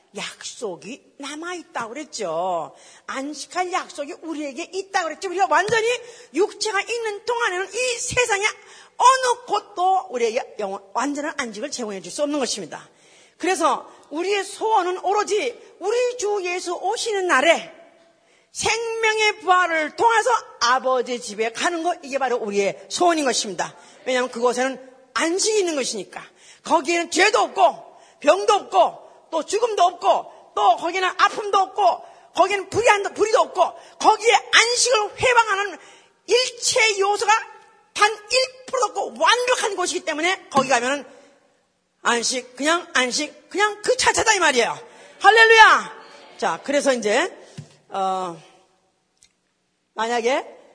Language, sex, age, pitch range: Korean, female, 40-59, 285-420 Hz